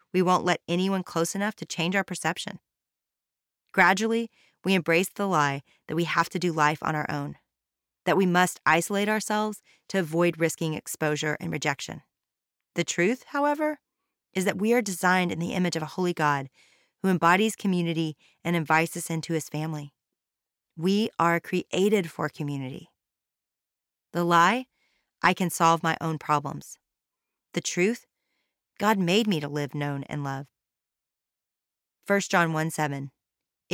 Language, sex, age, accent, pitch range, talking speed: English, female, 30-49, American, 150-190 Hz, 150 wpm